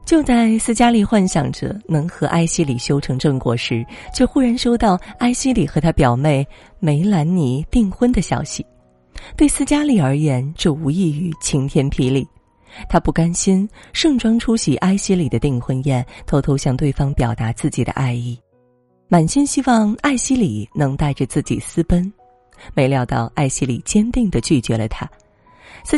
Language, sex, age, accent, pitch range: Chinese, female, 30-49, native, 125-195 Hz